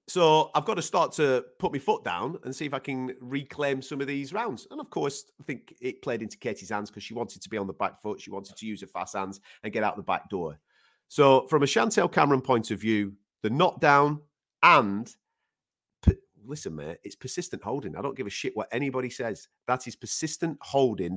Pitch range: 100-150 Hz